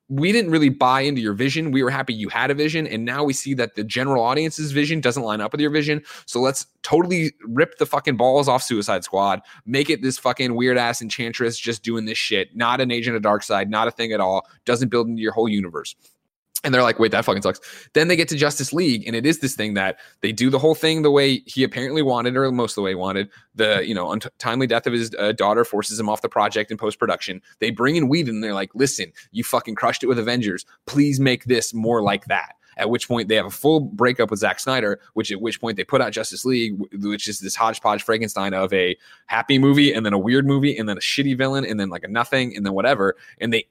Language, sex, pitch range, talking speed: English, male, 105-135 Hz, 260 wpm